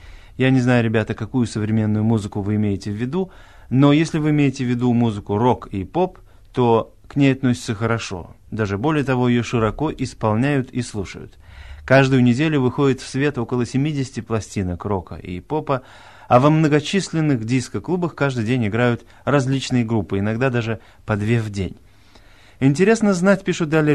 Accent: native